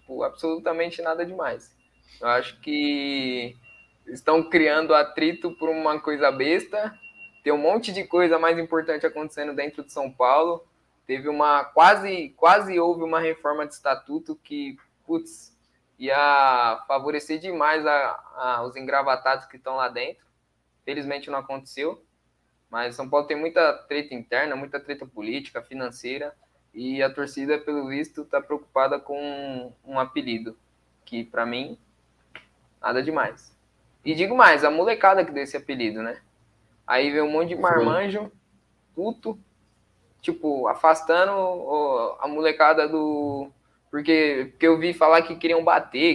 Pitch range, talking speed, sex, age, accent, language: 135-175 Hz, 140 wpm, male, 20-39, Brazilian, Portuguese